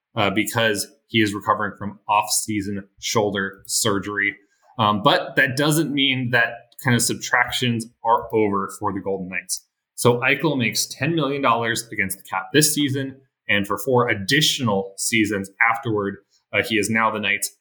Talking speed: 155 wpm